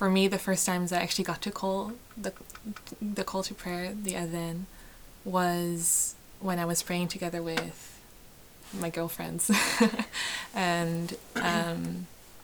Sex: female